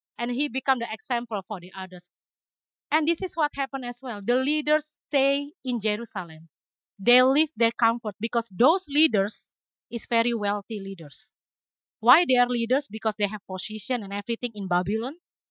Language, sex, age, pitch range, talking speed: English, female, 30-49, 205-250 Hz, 165 wpm